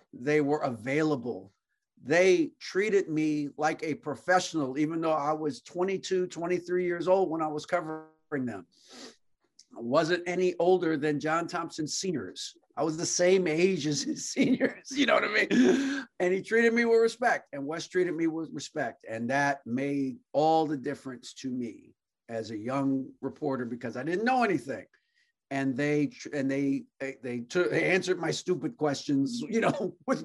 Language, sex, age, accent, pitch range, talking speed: English, male, 50-69, American, 135-180 Hz, 170 wpm